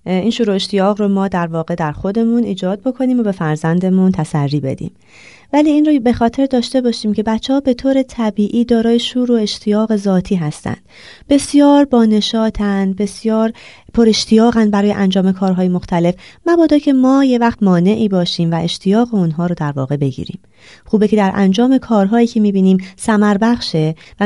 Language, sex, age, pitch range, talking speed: Persian, female, 30-49, 175-245 Hz, 165 wpm